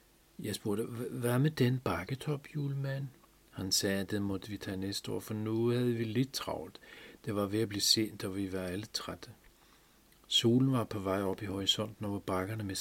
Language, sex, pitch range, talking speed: Danish, male, 95-115 Hz, 205 wpm